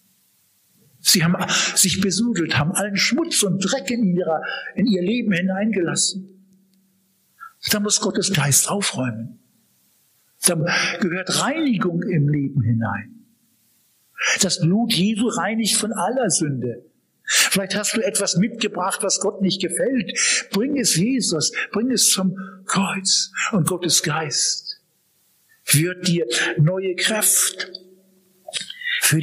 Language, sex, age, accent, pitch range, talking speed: German, male, 60-79, German, 175-210 Hz, 115 wpm